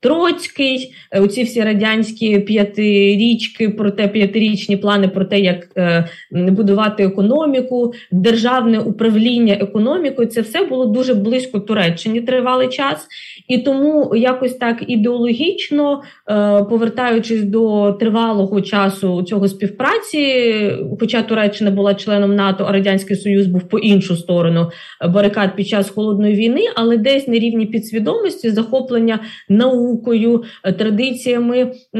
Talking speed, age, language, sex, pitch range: 115 wpm, 20-39, Ukrainian, female, 200-240 Hz